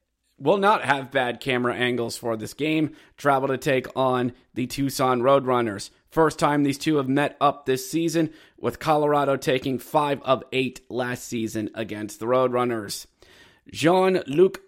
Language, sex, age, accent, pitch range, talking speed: English, male, 30-49, American, 130-160 Hz, 150 wpm